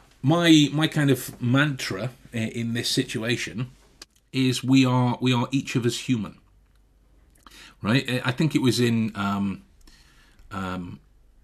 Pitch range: 105-135 Hz